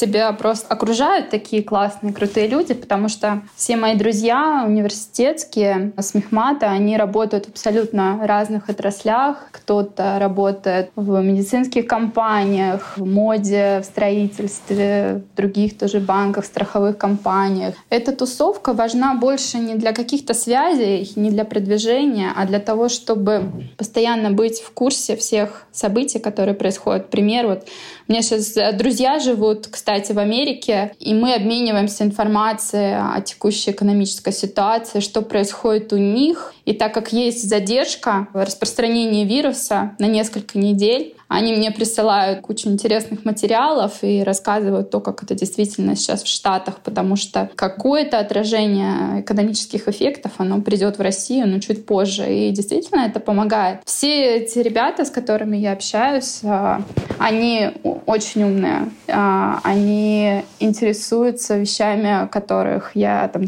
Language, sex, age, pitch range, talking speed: Russian, female, 20-39, 200-225 Hz, 130 wpm